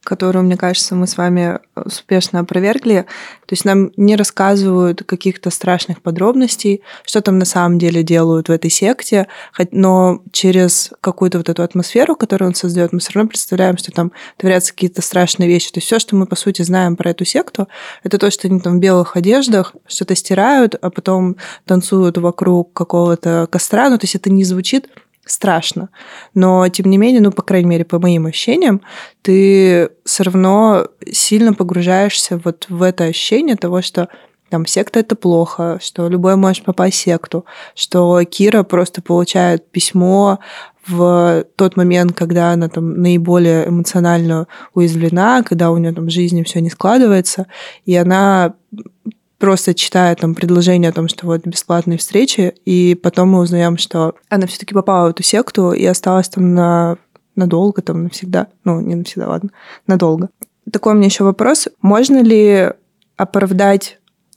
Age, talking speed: 20-39, 160 wpm